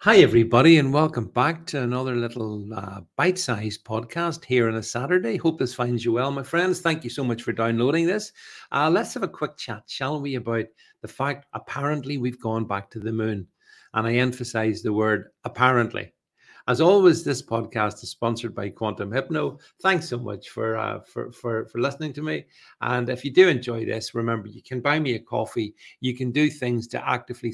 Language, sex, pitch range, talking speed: English, male, 115-150 Hz, 200 wpm